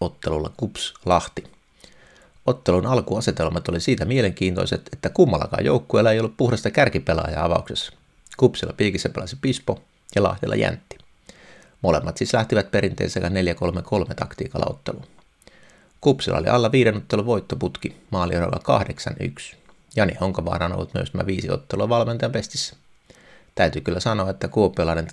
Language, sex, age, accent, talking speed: Finnish, male, 30-49, native, 130 wpm